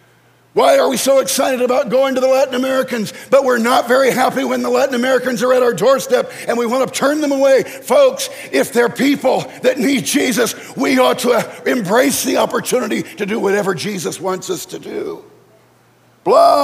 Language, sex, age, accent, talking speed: English, male, 60-79, American, 190 wpm